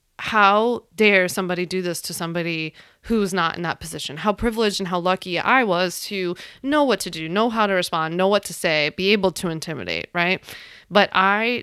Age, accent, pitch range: 20-39, American, 170-220 Hz